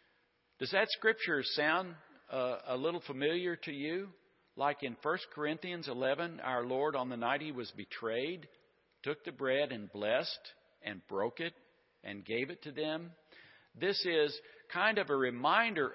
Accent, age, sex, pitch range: American, 50-69, male, 120-160 Hz